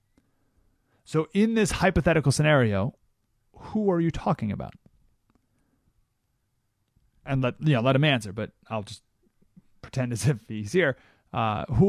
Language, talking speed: English, 135 wpm